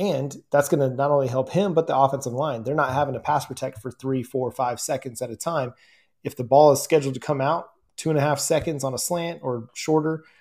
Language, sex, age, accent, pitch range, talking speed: English, male, 20-39, American, 130-150 Hz, 255 wpm